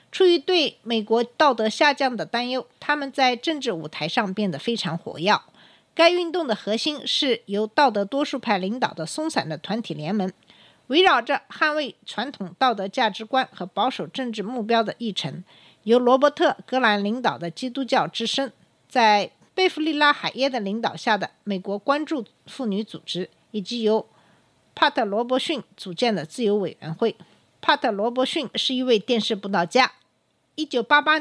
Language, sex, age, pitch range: Chinese, female, 50-69, 200-270 Hz